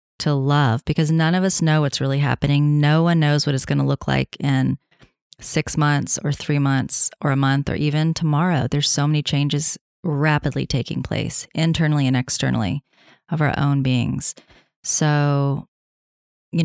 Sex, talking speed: female, 170 wpm